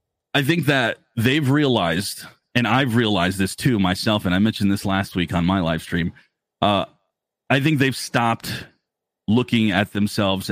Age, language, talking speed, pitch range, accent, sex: 30-49, English, 165 wpm, 105-130 Hz, American, male